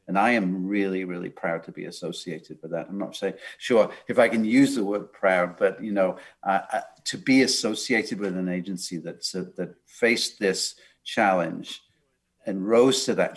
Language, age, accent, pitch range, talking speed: English, 50-69, British, 95-115 Hz, 195 wpm